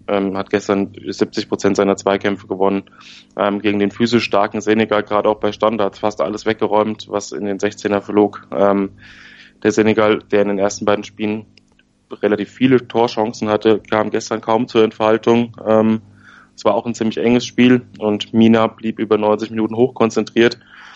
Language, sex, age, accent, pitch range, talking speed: German, male, 20-39, German, 105-110 Hz, 165 wpm